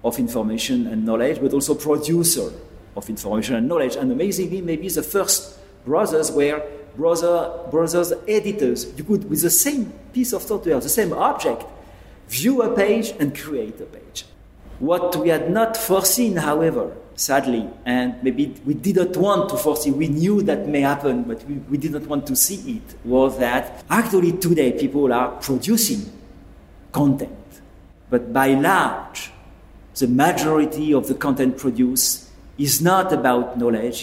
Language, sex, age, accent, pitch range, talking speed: English, male, 50-69, French, 120-170 Hz, 150 wpm